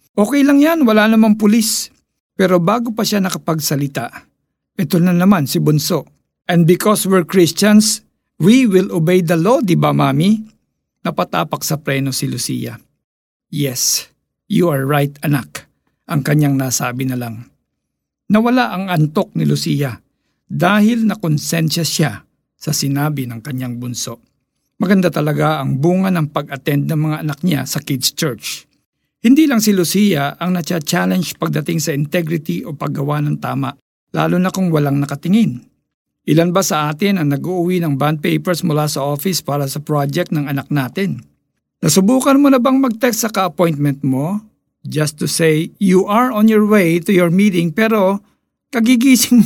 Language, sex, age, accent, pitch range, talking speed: Filipino, male, 50-69, native, 145-210 Hz, 155 wpm